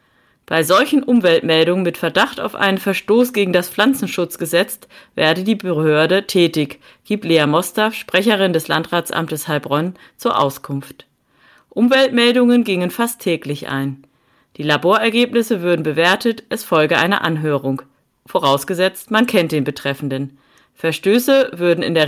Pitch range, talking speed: 155-215 Hz, 125 wpm